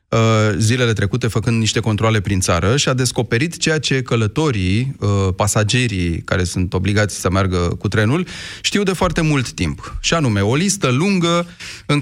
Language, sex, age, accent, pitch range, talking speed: Romanian, male, 30-49, native, 105-125 Hz, 160 wpm